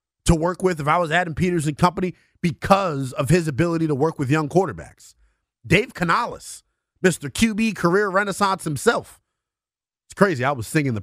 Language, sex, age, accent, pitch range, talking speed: English, male, 30-49, American, 125-180 Hz, 175 wpm